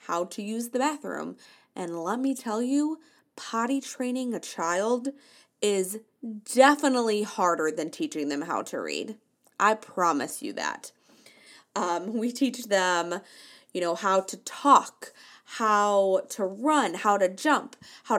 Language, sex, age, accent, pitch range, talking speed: English, female, 20-39, American, 190-270 Hz, 140 wpm